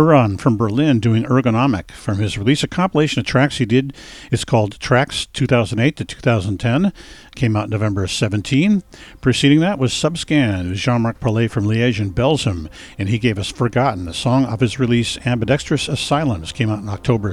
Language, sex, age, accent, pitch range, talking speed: English, male, 50-69, American, 110-140 Hz, 170 wpm